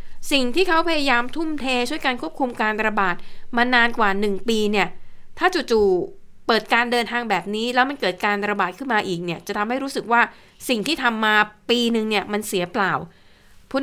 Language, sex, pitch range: Thai, female, 195-245 Hz